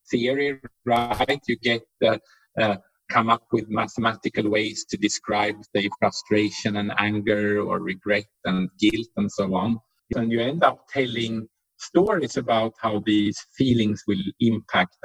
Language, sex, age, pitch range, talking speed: English, male, 50-69, 105-130 Hz, 145 wpm